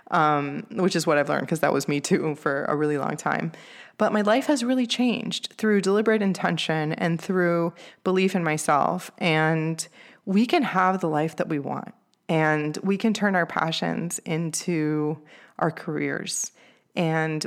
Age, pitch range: 20-39, 160-190 Hz